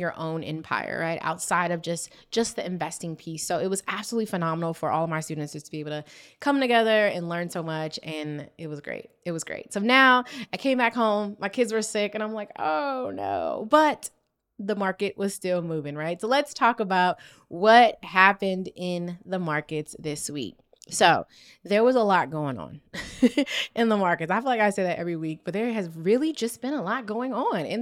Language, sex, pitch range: English, female, 170-220 Hz